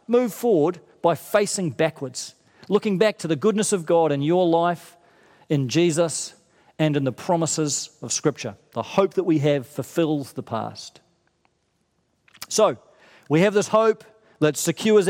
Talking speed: 150 wpm